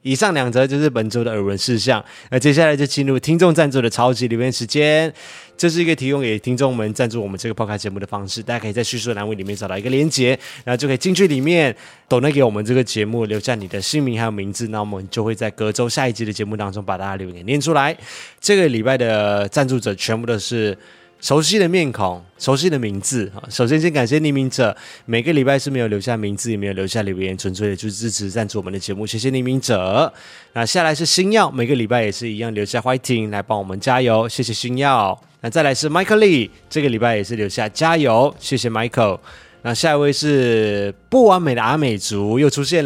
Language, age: Chinese, 20-39